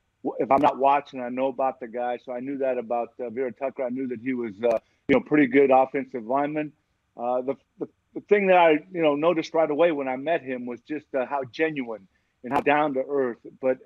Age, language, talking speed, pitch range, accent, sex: 50-69, English, 245 wpm, 125-145 Hz, American, male